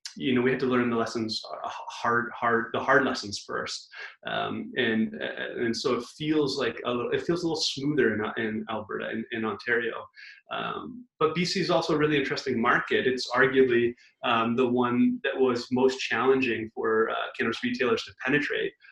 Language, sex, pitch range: English, male, 115-155 Hz